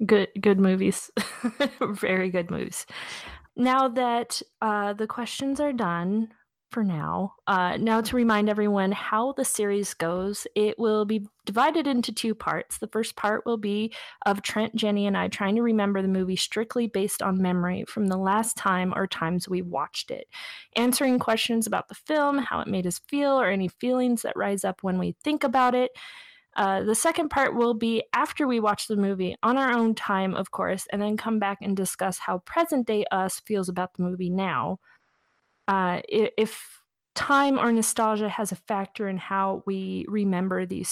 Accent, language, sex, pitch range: American, English, female, 190-240 Hz